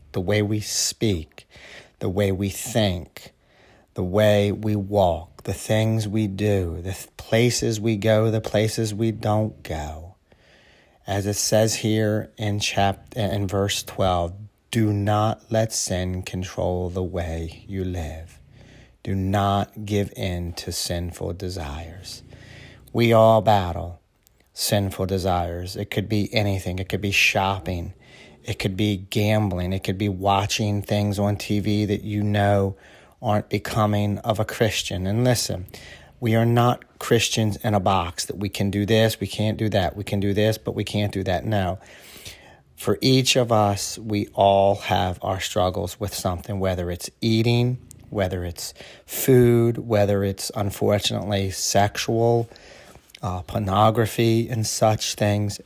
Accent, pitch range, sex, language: American, 95-110 Hz, male, English